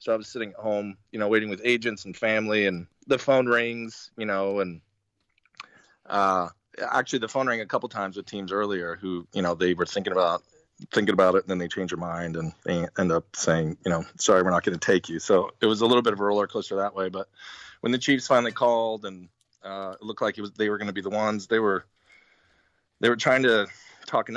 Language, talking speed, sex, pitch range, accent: English, 240 wpm, male, 95-115 Hz, American